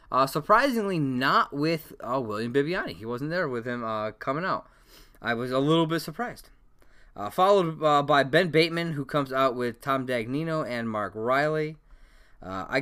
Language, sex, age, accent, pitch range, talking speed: English, male, 20-39, American, 105-150 Hz, 180 wpm